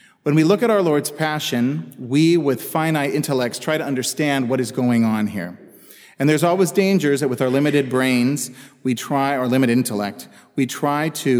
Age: 40-59